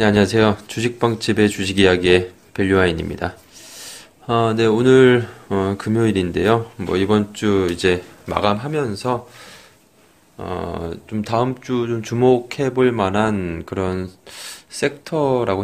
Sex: male